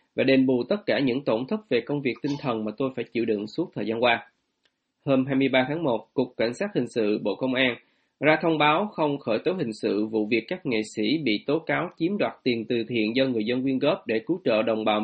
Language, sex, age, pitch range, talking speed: Vietnamese, male, 20-39, 115-155 Hz, 260 wpm